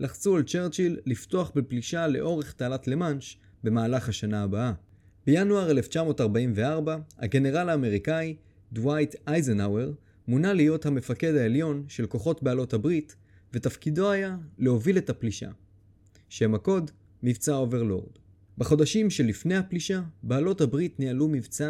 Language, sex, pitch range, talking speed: Hebrew, male, 110-155 Hz, 115 wpm